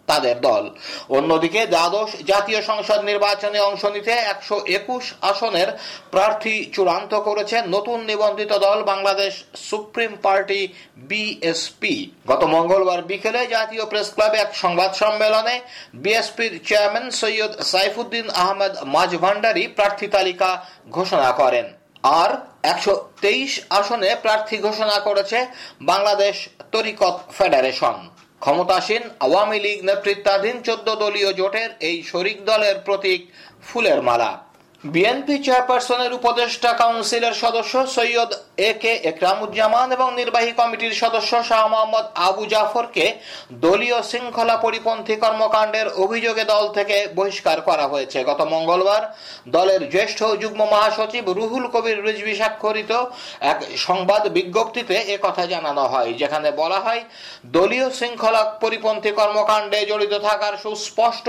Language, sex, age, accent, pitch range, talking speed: Bengali, male, 50-69, native, 195-230 Hz, 70 wpm